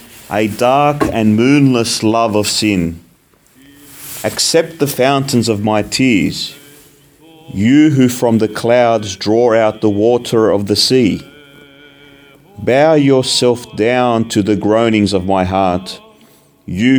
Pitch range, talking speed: 105-145 Hz, 125 wpm